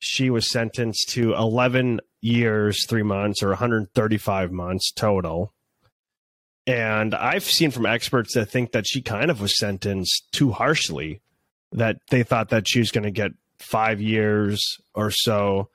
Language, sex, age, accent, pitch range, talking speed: English, male, 30-49, American, 105-125 Hz, 170 wpm